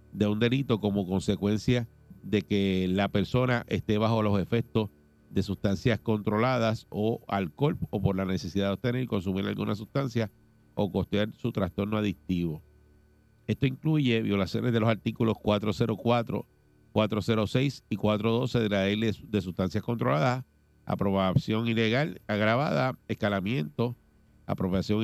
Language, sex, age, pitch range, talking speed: Spanish, male, 60-79, 100-115 Hz, 130 wpm